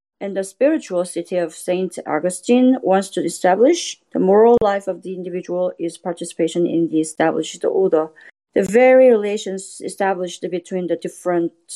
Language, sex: English, female